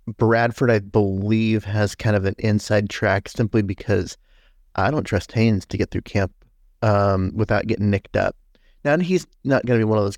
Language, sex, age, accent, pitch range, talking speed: English, male, 30-49, American, 100-115 Hz, 195 wpm